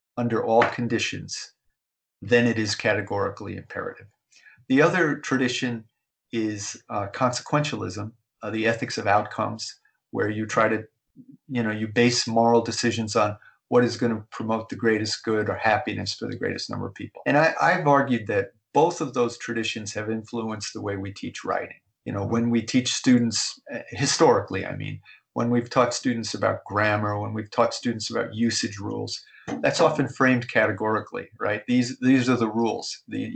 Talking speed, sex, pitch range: 170 wpm, male, 105-120 Hz